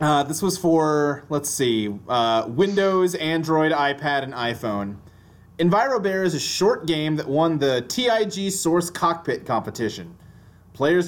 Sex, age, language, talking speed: male, 30-49, English, 140 wpm